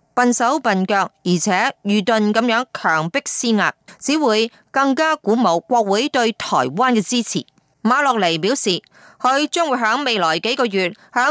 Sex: female